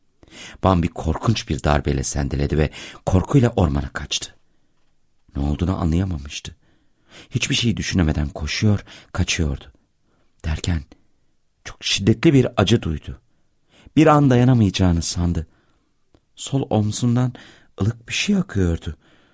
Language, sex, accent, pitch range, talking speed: Turkish, male, native, 75-115 Hz, 100 wpm